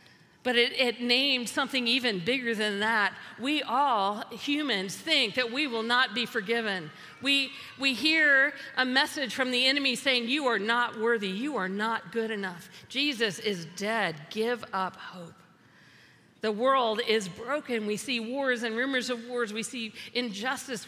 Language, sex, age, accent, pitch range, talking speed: English, female, 50-69, American, 210-265 Hz, 165 wpm